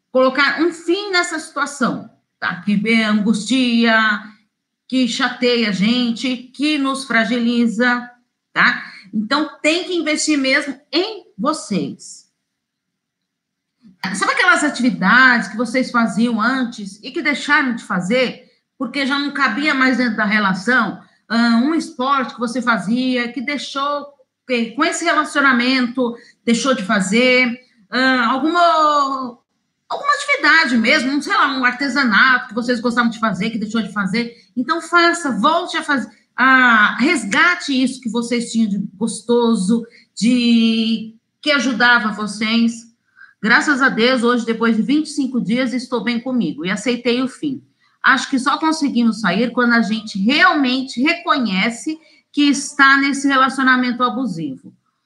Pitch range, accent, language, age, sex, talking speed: 230-280 Hz, Brazilian, Portuguese, 40-59, female, 130 wpm